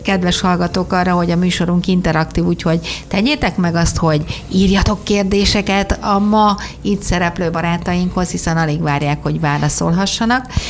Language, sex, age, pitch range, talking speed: Hungarian, female, 50-69, 160-195 Hz, 135 wpm